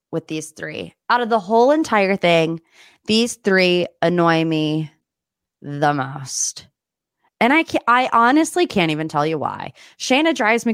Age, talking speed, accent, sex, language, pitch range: 20-39, 150 wpm, American, female, English, 170-245 Hz